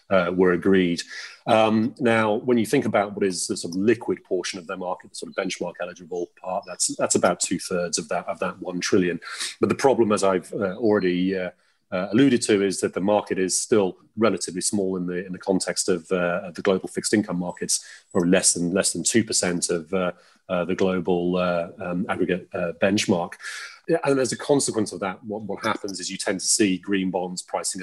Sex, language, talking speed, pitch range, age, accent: male, English, 215 wpm, 90-105 Hz, 30-49, British